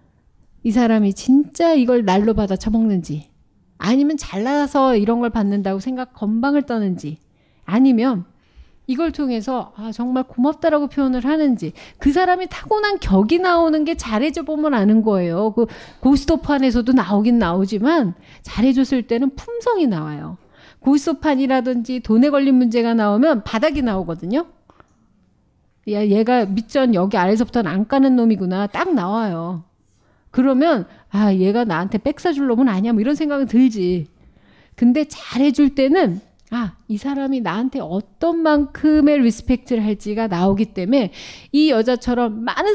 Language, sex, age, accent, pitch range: Korean, female, 40-59, native, 205-280 Hz